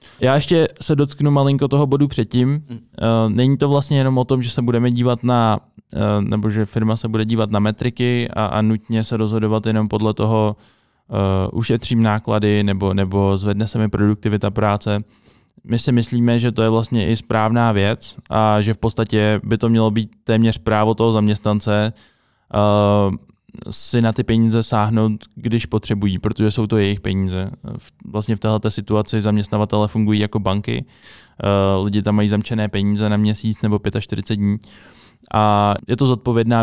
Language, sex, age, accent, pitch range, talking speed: Czech, male, 20-39, native, 105-115 Hz, 165 wpm